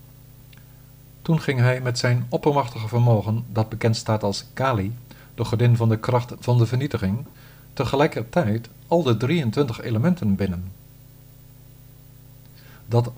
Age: 50-69